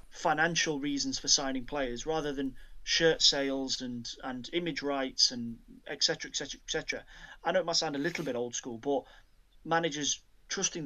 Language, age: English, 30-49